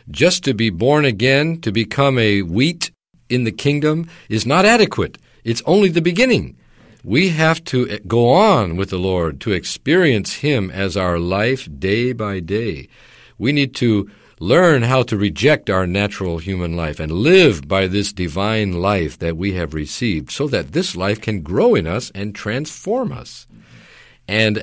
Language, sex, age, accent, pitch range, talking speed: English, male, 50-69, American, 90-130 Hz, 170 wpm